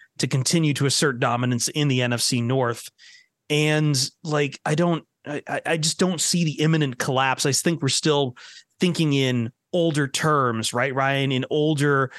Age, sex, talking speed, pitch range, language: 30-49, male, 160 wpm, 125-155 Hz, English